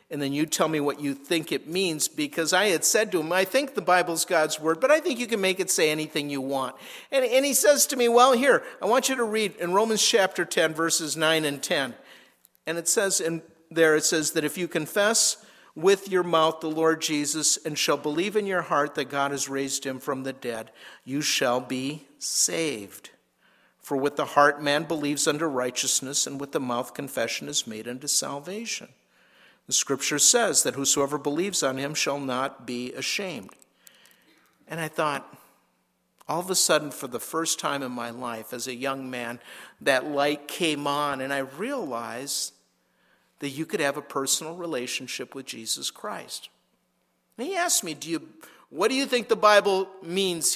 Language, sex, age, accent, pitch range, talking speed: English, male, 50-69, American, 140-195 Hz, 195 wpm